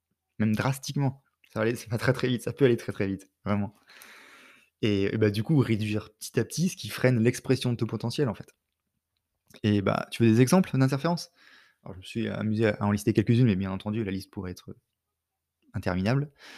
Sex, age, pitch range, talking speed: male, 20-39, 105-125 Hz, 215 wpm